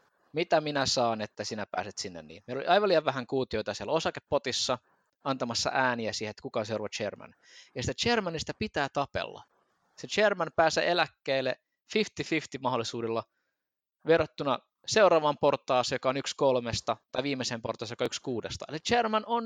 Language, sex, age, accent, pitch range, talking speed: Finnish, male, 20-39, native, 115-150 Hz, 155 wpm